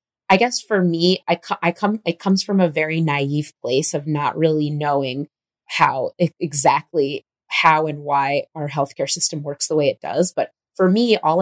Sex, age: female, 20-39